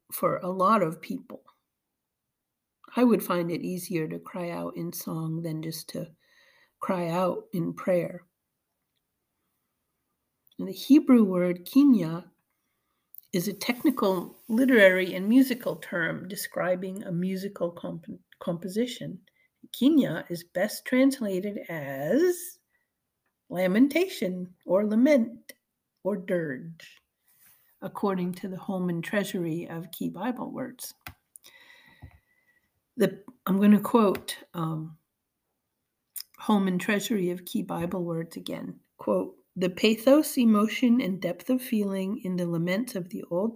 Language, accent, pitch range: English, American, 180-245 Hz